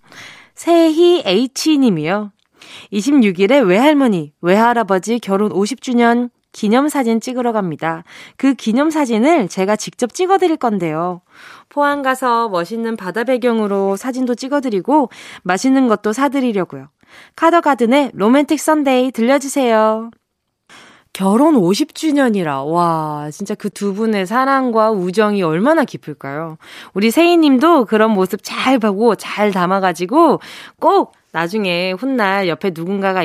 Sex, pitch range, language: female, 190-280 Hz, Korean